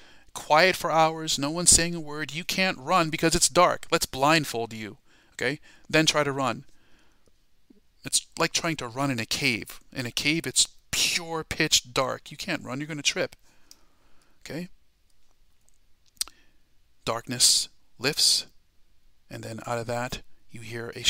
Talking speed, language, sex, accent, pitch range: 155 wpm, English, male, American, 110-150 Hz